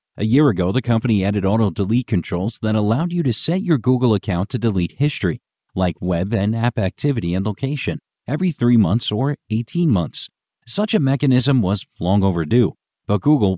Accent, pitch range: American, 100-135 Hz